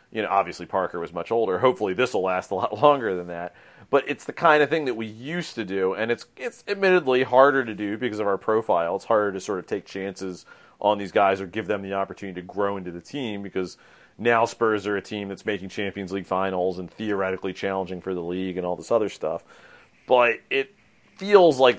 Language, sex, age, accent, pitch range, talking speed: English, male, 30-49, American, 95-125 Hz, 230 wpm